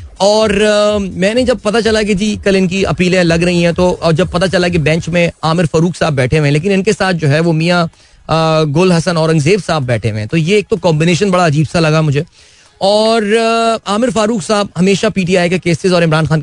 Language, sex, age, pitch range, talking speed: Hindi, male, 30-49, 155-200 Hz, 240 wpm